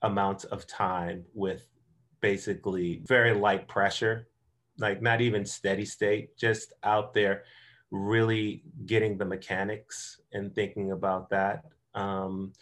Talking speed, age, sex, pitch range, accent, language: 120 wpm, 30-49, male, 95-105 Hz, American, English